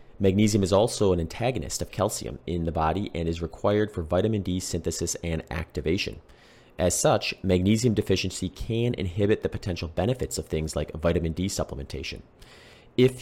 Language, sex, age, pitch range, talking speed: English, male, 30-49, 80-100 Hz, 160 wpm